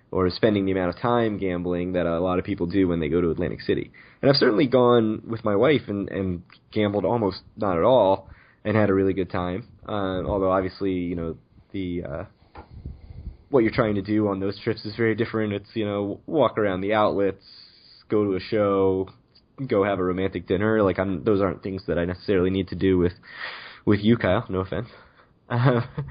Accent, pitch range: American, 95-115 Hz